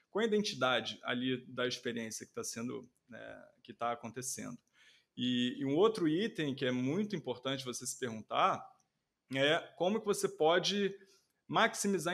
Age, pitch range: 20-39, 125-170 Hz